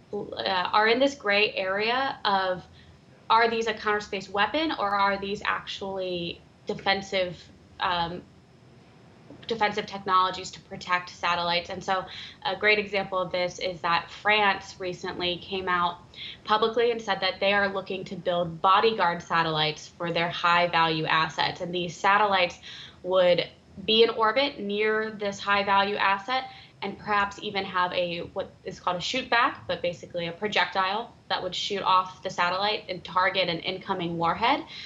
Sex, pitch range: female, 175-200 Hz